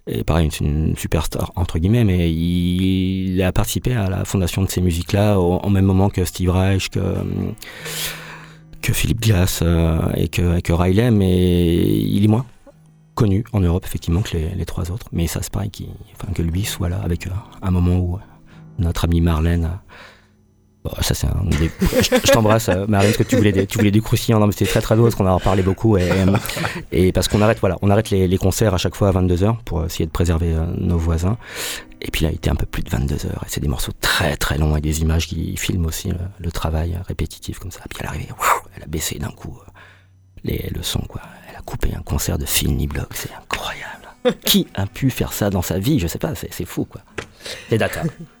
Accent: French